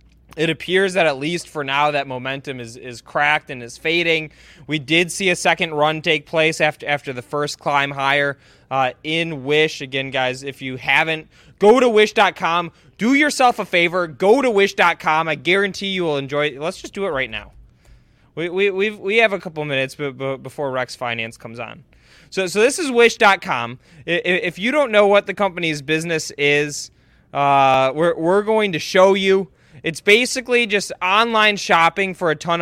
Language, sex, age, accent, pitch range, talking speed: English, male, 20-39, American, 145-195 Hz, 185 wpm